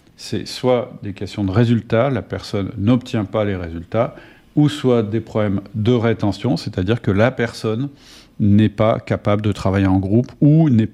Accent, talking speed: French, 170 wpm